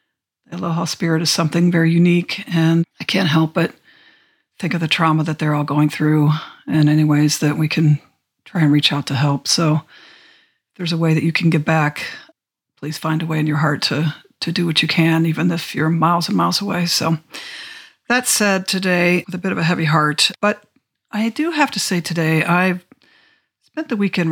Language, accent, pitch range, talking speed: English, American, 155-190 Hz, 205 wpm